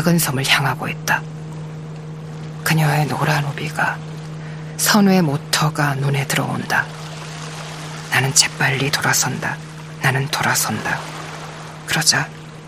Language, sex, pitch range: Korean, female, 150-175 Hz